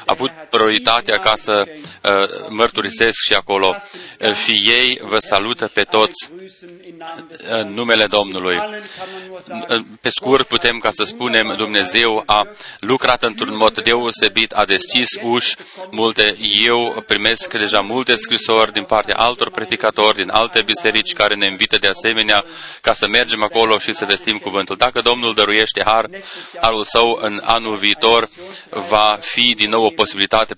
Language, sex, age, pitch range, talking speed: Romanian, male, 30-49, 105-120 Hz, 145 wpm